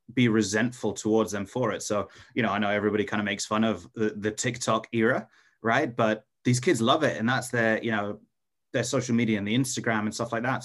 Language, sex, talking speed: English, male, 235 wpm